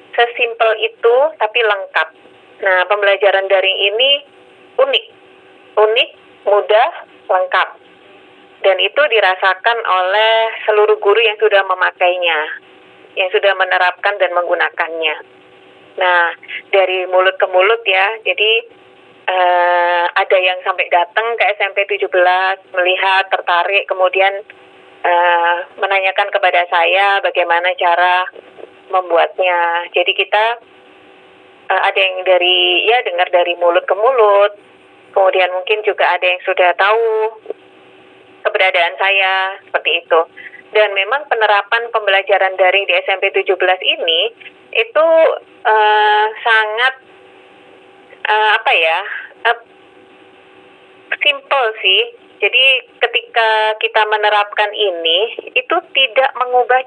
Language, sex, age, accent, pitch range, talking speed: Indonesian, female, 30-49, native, 185-245 Hz, 105 wpm